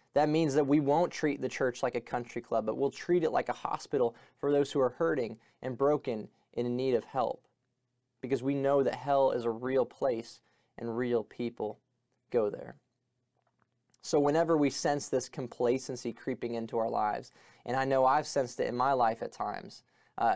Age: 20-39